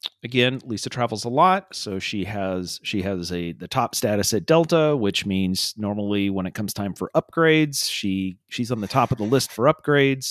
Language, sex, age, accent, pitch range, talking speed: English, male, 40-59, American, 100-155 Hz, 205 wpm